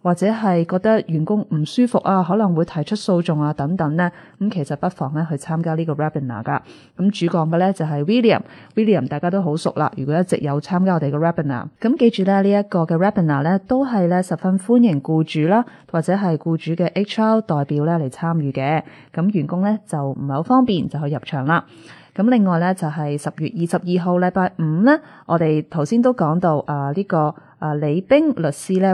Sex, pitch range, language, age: female, 155-195 Hz, Chinese, 20-39